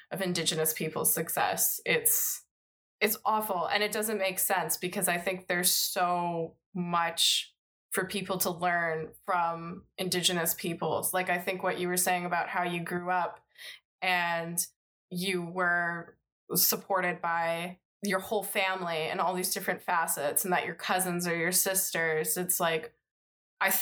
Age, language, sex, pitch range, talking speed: 20-39, English, female, 175-200 Hz, 150 wpm